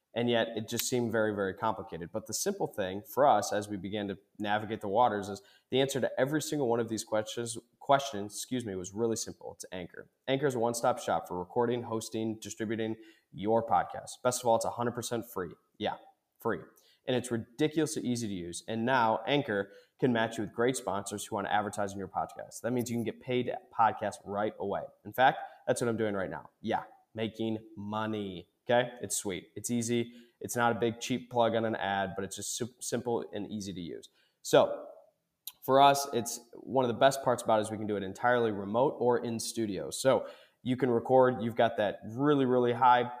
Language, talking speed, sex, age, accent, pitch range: English, 215 wpm, male, 20-39, American, 105-125 Hz